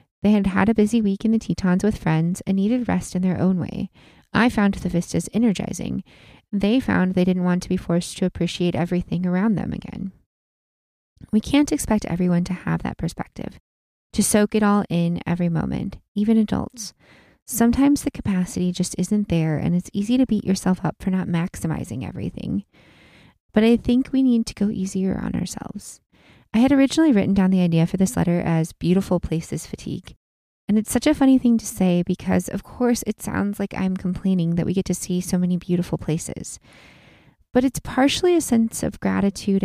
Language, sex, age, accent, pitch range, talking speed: English, female, 20-39, American, 175-215 Hz, 190 wpm